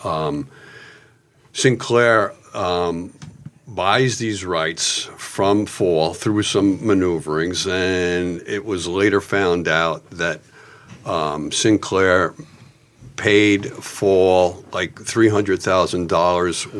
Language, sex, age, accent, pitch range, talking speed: English, male, 50-69, American, 90-110 Hz, 85 wpm